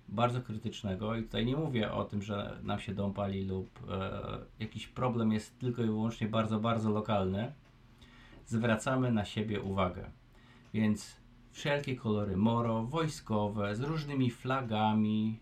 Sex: male